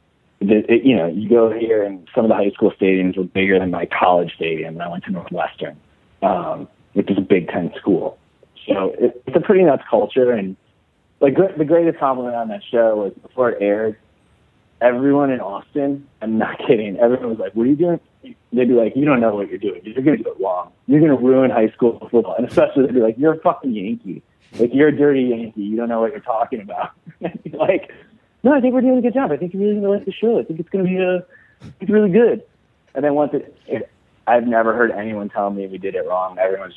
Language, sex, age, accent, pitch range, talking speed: English, male, 30-49, American, 100-150 Hz, 245 wpm